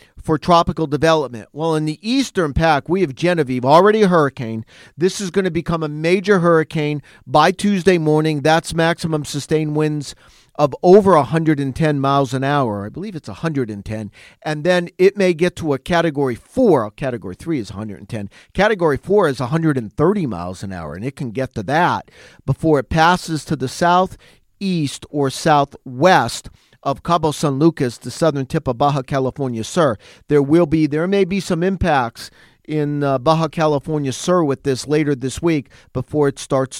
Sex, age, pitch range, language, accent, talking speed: male, 50-69, 140-180 Hz, English, American, 175 wpm